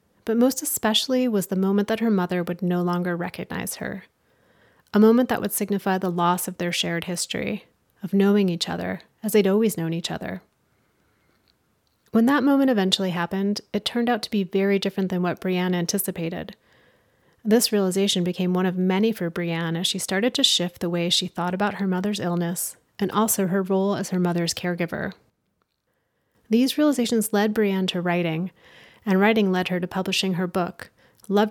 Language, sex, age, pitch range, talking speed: English, female, 30-49, 180-215 Hz, 180 wpm